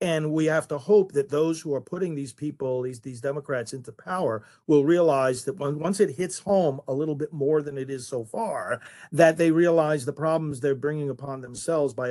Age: 50-69